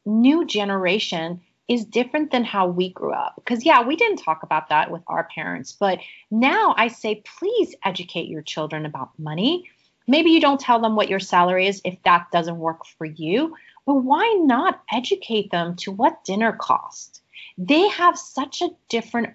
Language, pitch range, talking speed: English, 185-265 Hz, 180 wpm